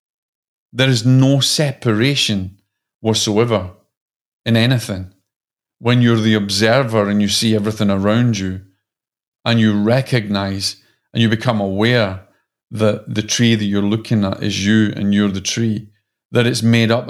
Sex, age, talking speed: male, 40-59, 145 wpm